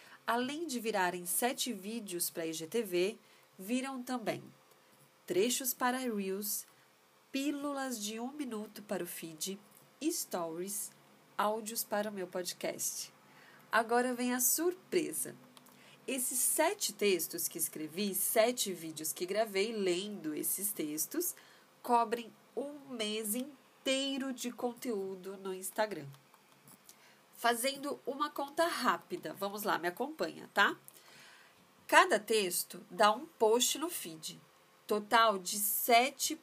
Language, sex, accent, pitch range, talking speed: Portuguese, female, Brazilian, 190-255 Hz, 115 wpm